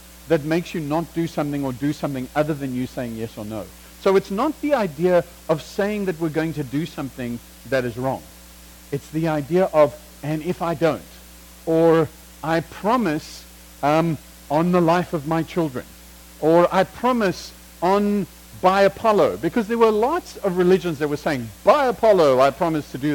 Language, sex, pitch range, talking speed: English, male, 130-180 Hz, 185 wpm